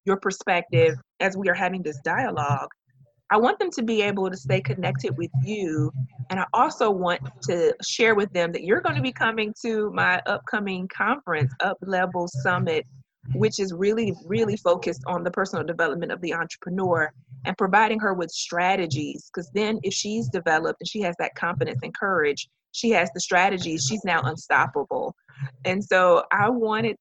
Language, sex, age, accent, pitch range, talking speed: English, female, 30-49, American, 160-205 Hz, 180 wpm